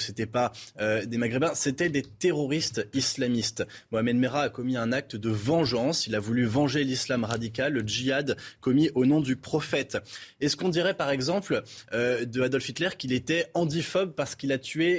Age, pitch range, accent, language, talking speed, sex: 20-39, 125-155 Hz, French, French, 185 wpm, male